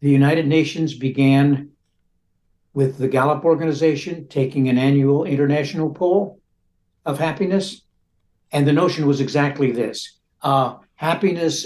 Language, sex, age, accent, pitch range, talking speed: English, male, 60-79, American, 135-155 Hz, 120 wpm